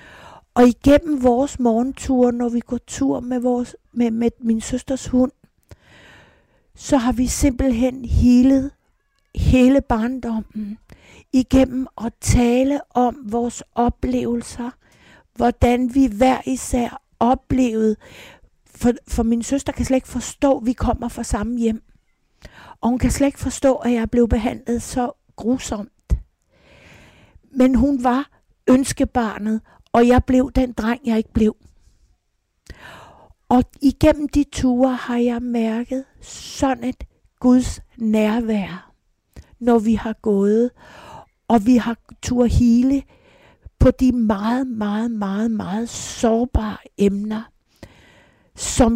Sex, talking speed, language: female, 120 wpm, Danish